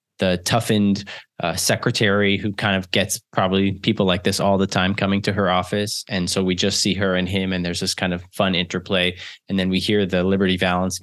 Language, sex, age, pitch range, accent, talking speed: English, male, 20-39, 95-110 Hz, American, 225 wpm